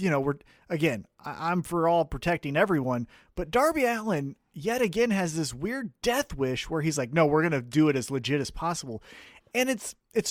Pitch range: 150-225 Hz